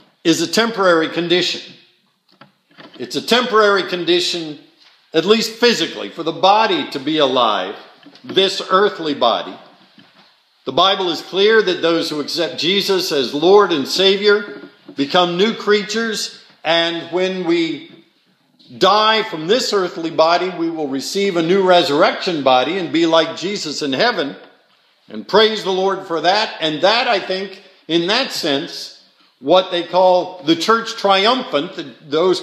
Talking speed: 140 wpm